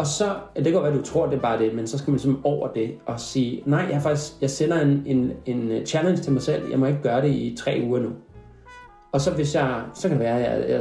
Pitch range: 130-160 Hz